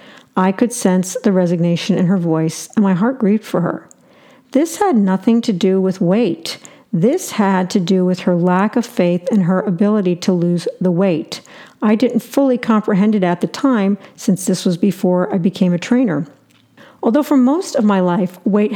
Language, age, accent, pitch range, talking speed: English, 50-69, American, 190-240 Hz, 190 wpm